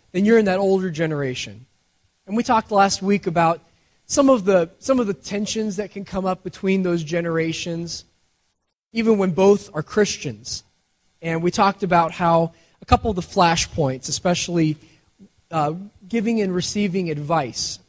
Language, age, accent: English, 20-39, American